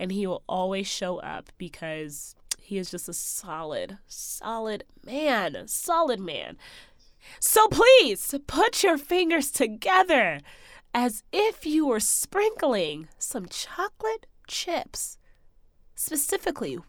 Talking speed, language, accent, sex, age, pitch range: 110 wpm, English, American, female, 20-39, 210-300 Hz